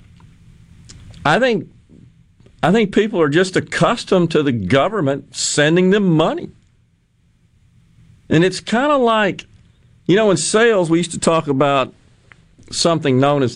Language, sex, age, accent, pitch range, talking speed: English, male, 50-69, American, 125-200 Hz, 135 wpm